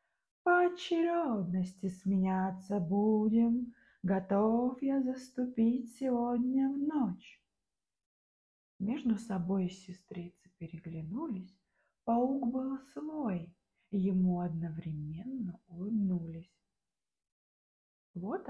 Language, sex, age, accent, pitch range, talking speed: Russian, female, 20-39, native, 180-260 Hz, 70 wpm